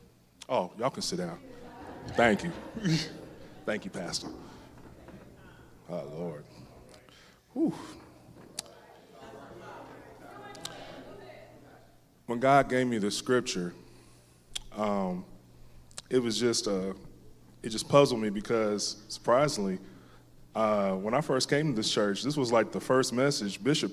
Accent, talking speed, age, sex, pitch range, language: American, 115 wpm, 20-39, male, 100-130 Hz, English